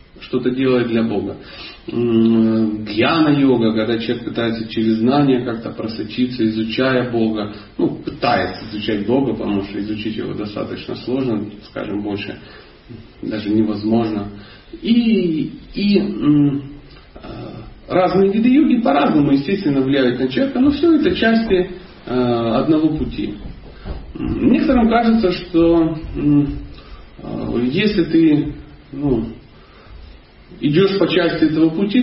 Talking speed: 105 wpm